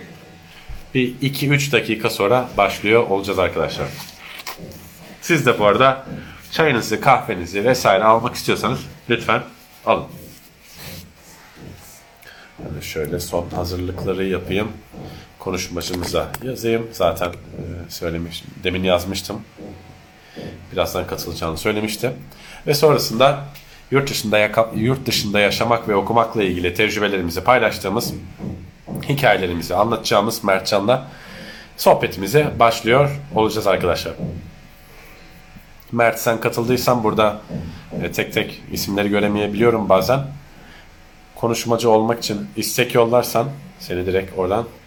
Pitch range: 95-125 Hz